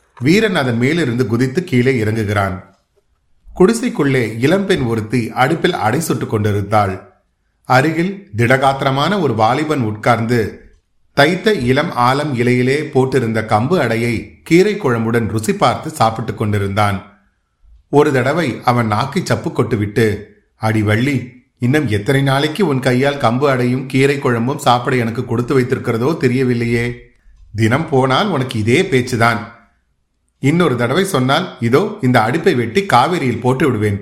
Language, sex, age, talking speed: Tamil, male, 30-49, 110 wpm